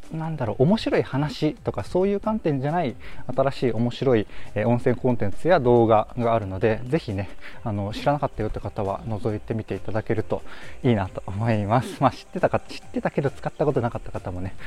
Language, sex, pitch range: Japanese, male, 100-140 Hz